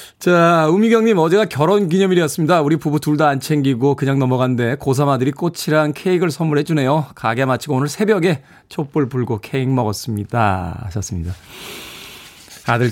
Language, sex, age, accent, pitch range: Korean, male, 20-39, native, 130-175 Hz